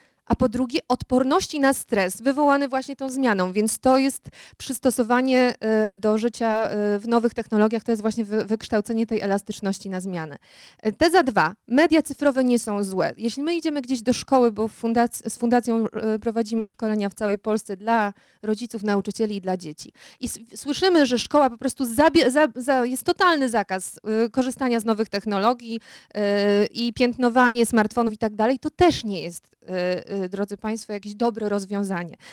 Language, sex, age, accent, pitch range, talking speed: Polish, female, 20-39, native, 215-250 Hz, 165 wpm